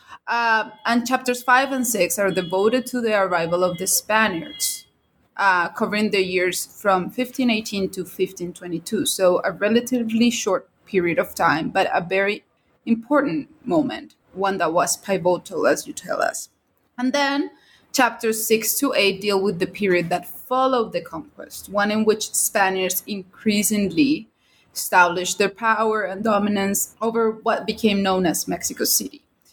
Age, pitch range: 20-39, 190-250 Hz